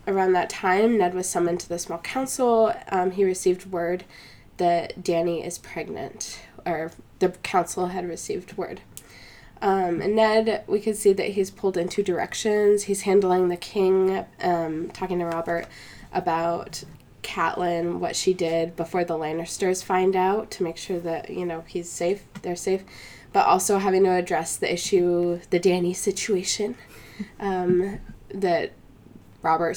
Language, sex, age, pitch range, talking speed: English, female, 10-29, 175-205 Hz, 155 wpm